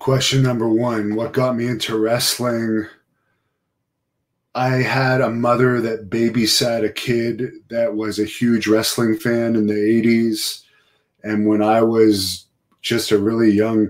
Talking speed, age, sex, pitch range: 145 wpm, 30-49, male, 105-115 Hz